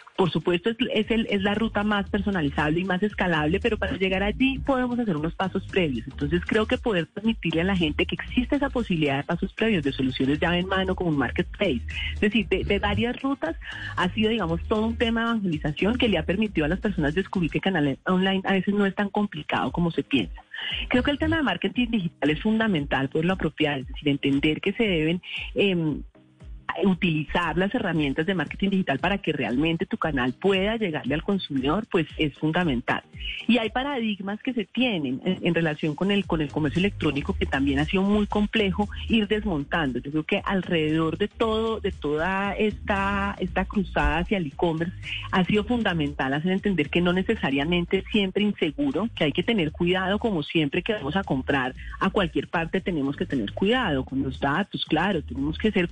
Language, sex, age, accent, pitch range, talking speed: Spanish, female, 40-59, Colombian, 155-210 Hz, 205 wpm